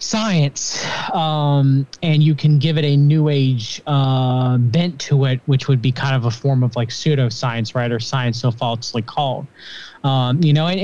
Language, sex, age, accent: English, male, 20-39, American